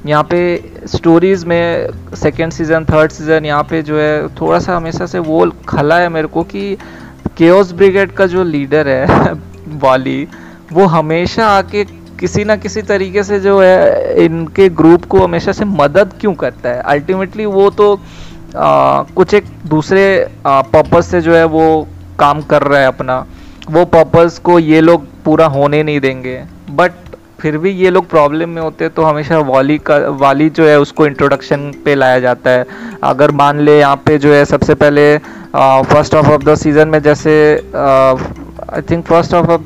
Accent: native